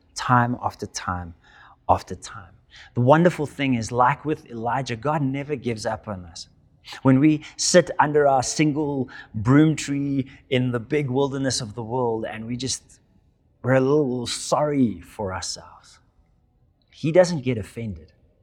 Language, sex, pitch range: English, male, 95-140 Hz